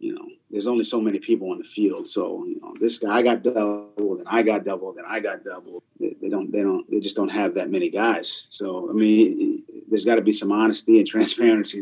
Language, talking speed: English, 250 wpm